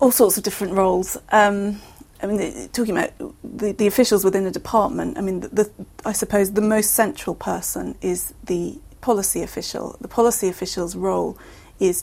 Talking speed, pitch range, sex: 180 wpm, 185-215 Hz, female